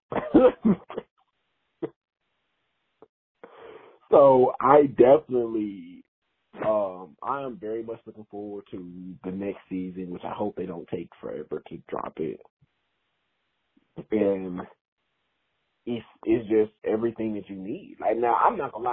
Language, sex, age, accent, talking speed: English, male, 30-49, American, 115 wpm